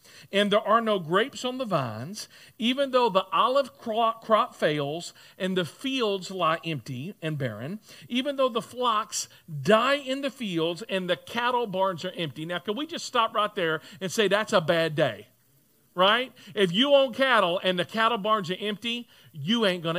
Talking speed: 185 wpm